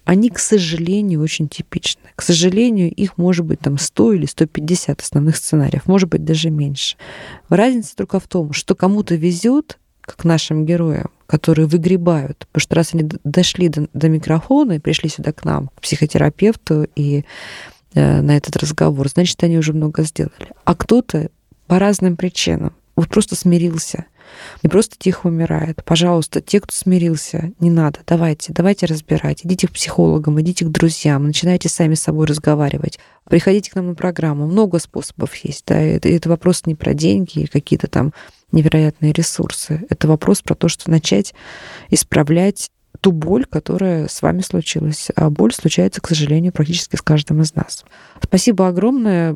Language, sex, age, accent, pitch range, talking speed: Russian, female, 20-39, native, 155-180 Hz, 160 wpm